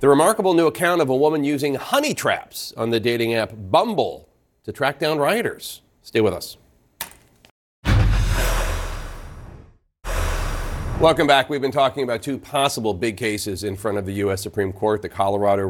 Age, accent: 40-59, American